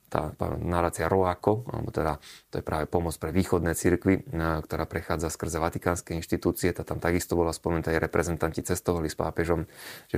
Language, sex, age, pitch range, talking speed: Slovak, male, 30-49, 80-95 Hz, 165 wpm